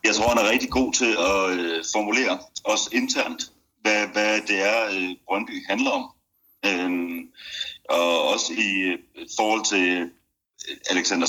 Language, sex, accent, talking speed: Danish, male, native, 135 wpm